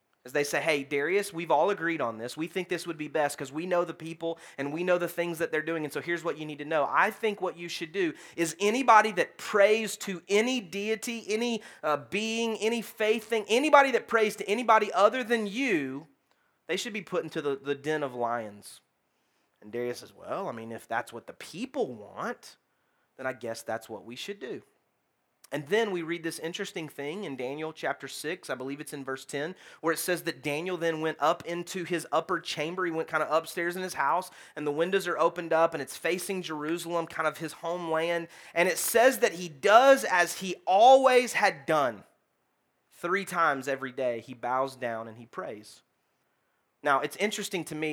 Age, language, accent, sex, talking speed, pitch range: 30-49, English, American, male, 215 wpm, 150-200 Hz